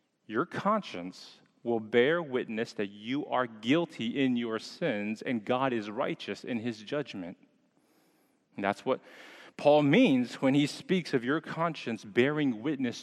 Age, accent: 40-59, American